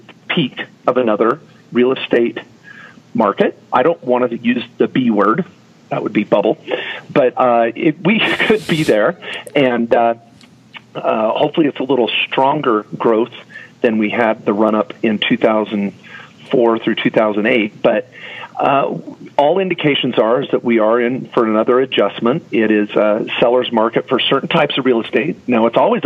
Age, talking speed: 40-59, 155 wpm